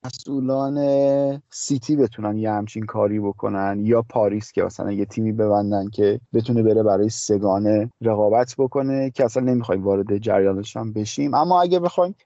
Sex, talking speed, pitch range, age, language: male, 140 wpm, 115-140 Hz, 30-49, Persian